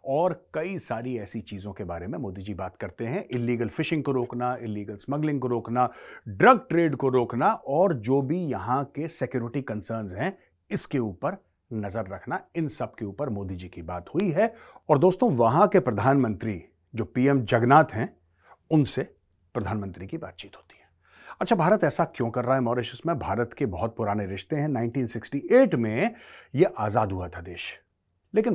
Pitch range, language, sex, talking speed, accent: 100-145 Hz, Hindi, male, 180 wpm, native